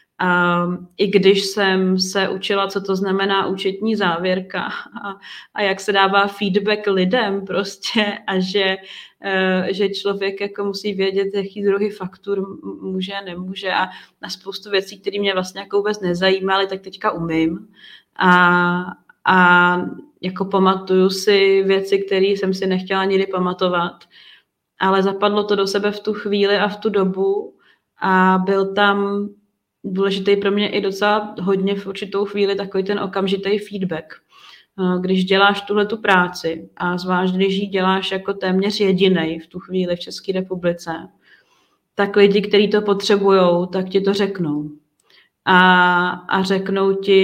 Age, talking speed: 30-49, 145 wpm